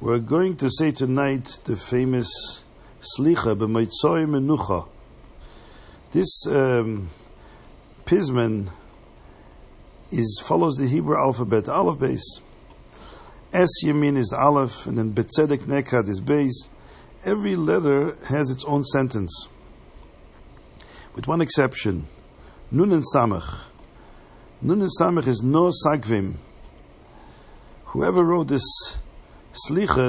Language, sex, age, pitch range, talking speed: English, male, 50-69, 95-145 Hz, 105 wpm